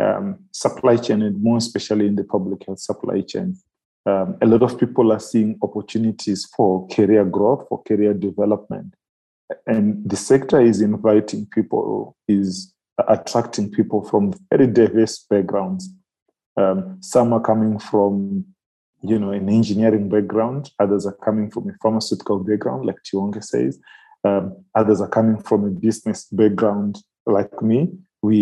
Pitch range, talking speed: 105-125 Hz, 150 wpm